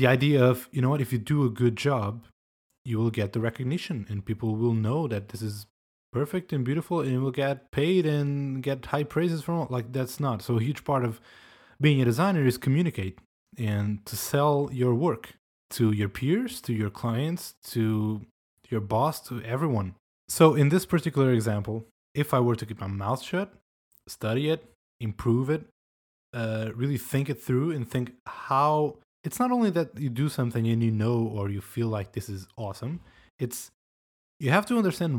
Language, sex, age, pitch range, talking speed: English, male, 20-39, 110-140 Hz, 195 wpm